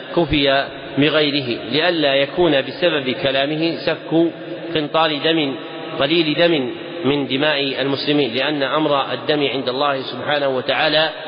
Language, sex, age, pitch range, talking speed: Arabic, male, 40-59, 135-160 Hz, 110 wpm